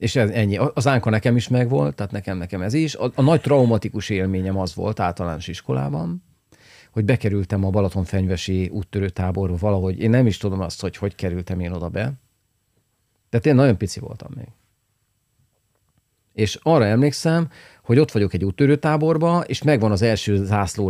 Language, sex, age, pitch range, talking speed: Hungarian, male, 40-59, 95-125 Hz, 160 wpm